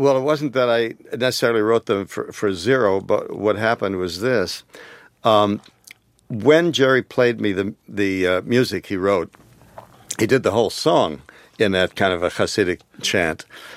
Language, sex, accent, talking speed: English, male, American, 170 wpm